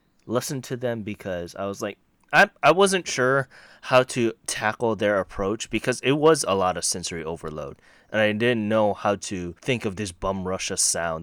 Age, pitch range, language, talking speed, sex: 20-39, 95-125 Hz, English, 190 wpm, male